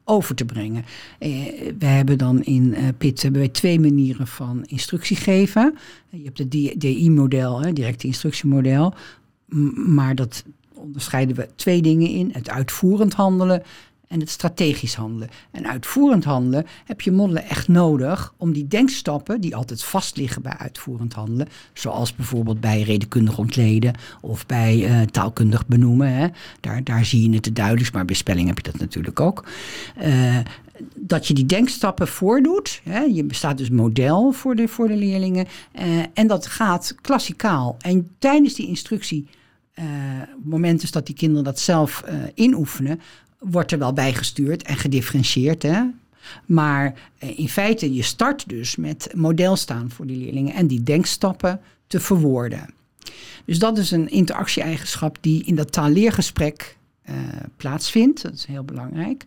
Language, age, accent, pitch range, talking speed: Dutch, 60-79, Dutch, 130-180 Hz, 150 wpm